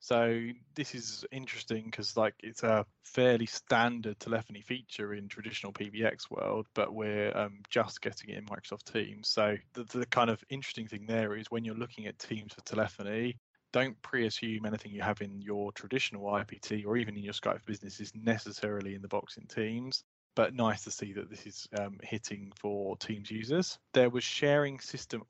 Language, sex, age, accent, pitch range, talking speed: English, male, 20-39, British, 105-115 Hz, 185 wpm